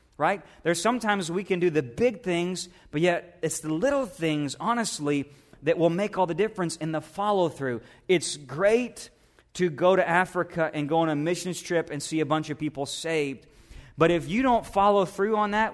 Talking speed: 200 wpm